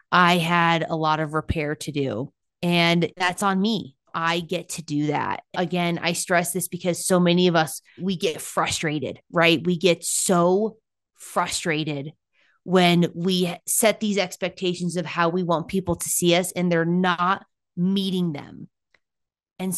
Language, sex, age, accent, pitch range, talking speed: English, female, 20-39, American, 165-200 Hz, 160 wpm